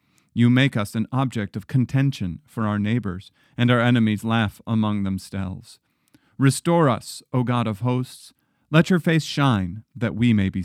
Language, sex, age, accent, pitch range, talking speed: English, male, 40-59, American, 105-145 Hz, 170 wpm